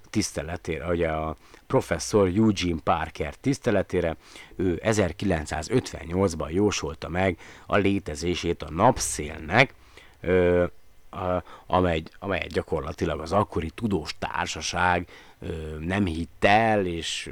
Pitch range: 80-100 Hz